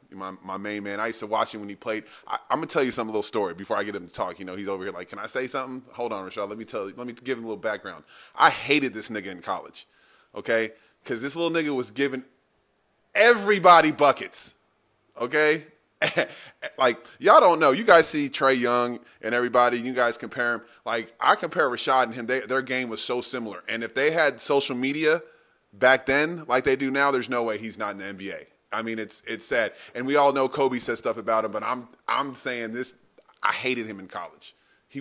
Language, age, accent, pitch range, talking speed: English, 20-39, American, 115-145 Hz, 240 wpm